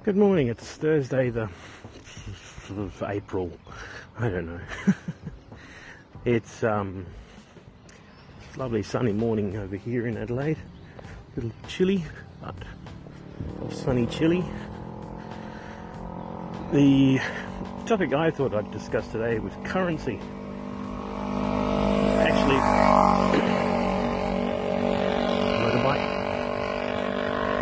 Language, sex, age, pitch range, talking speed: English, male, 40-59, 100-135 Hz, 85 wpm